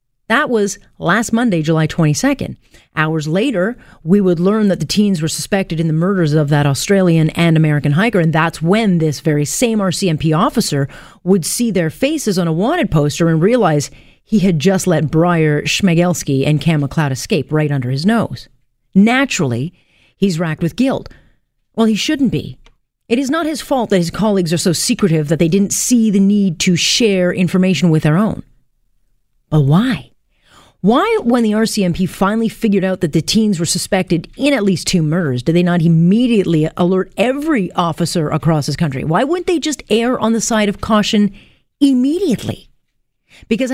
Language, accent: English, American